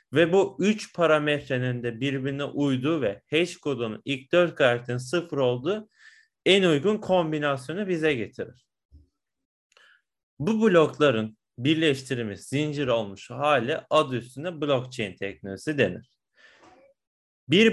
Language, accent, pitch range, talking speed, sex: English, Turkish, 125-175 Hz, 110 wpm, male